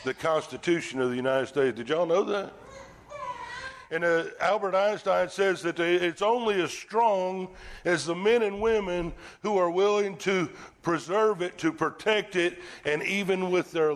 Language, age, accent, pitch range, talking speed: English, 60-79, American, 135-185 Hz, 165 wpm